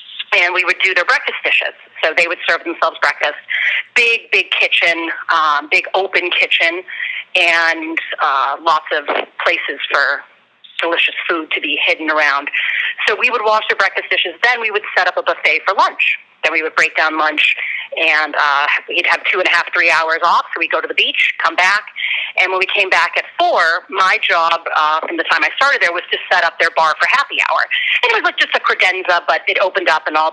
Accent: American